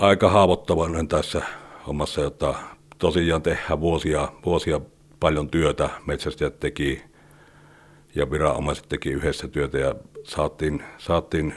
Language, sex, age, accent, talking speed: Finnish, male, 60-79, native, 105 wpm